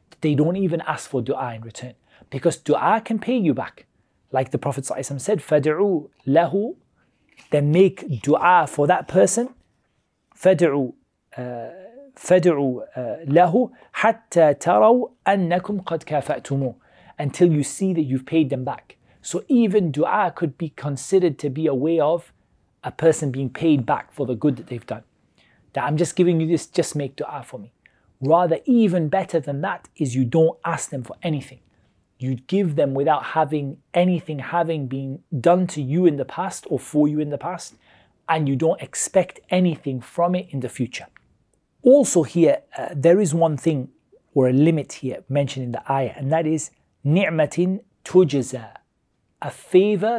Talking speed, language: 165 wpm, English